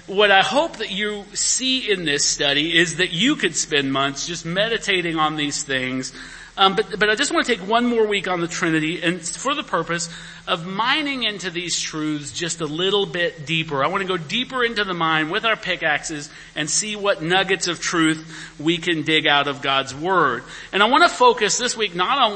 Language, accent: English, American